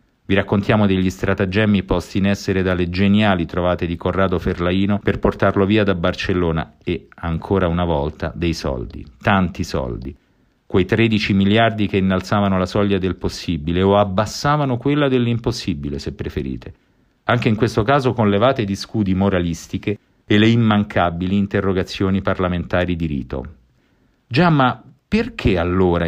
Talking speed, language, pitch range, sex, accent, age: 140 wpm, Italian, 95-115 Hz, male, native, 50-69